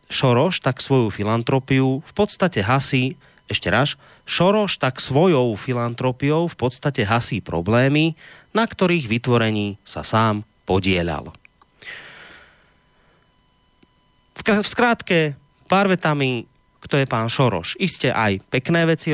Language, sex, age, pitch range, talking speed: Slovak, male, 30-49, 115-150 Hz, 110 wpm